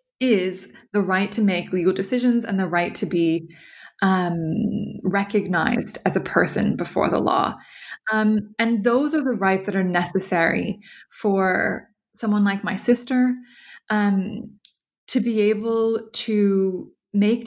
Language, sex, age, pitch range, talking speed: English, female, 20-39, 190-220 Hz, 135 wpm